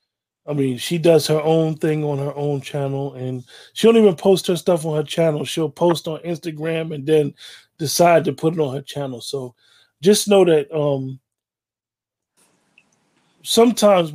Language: English